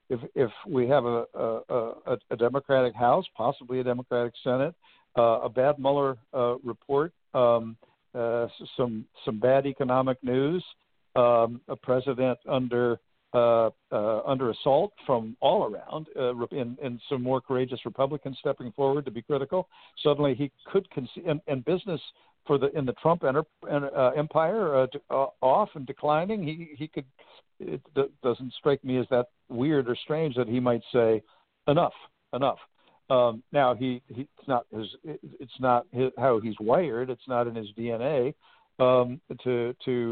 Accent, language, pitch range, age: American, English, 120-145 Hz, 60-79